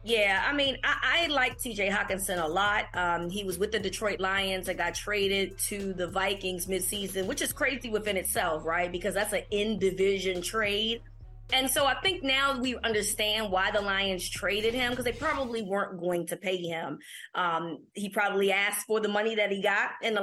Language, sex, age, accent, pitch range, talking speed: English, female, 20-39, American, 185-225 Hz, 200 wpm